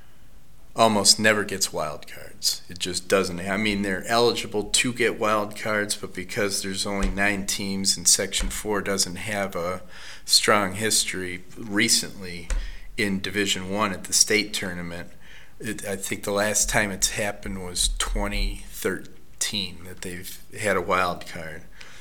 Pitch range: 90-105 Hz